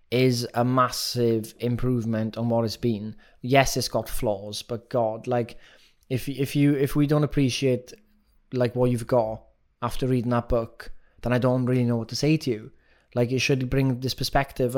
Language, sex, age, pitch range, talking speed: English, male, 20-39, 120-145 Hz, 190 wpm